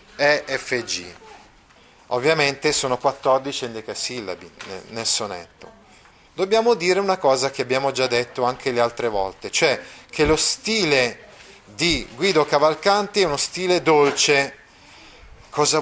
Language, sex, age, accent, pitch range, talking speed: Italian, male, 30-49, native, 125-180 Hz, 120 wpm